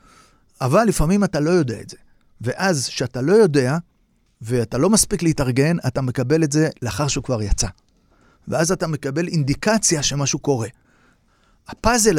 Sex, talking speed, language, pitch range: male, 150 wpm, Hebrew, 130-170 Hz